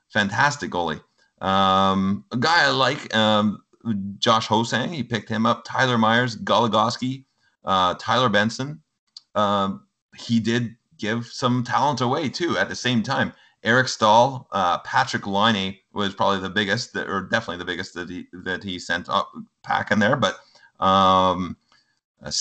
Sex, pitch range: male, 100-120 Hz